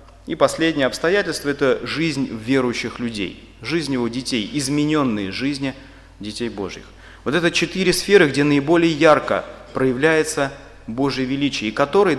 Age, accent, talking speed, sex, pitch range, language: 30-49, native, 135 wpm, male, 105-150 Hz, Russian